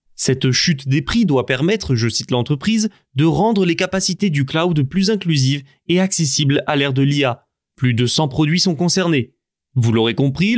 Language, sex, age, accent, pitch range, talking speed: French, male, 20-39, French, 135-185 Hz, 180 wpm